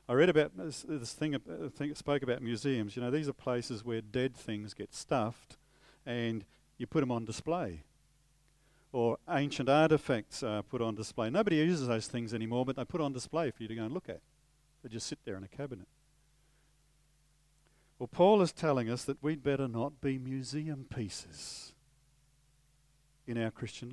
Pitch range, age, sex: 125-150 Hz, 50-69, male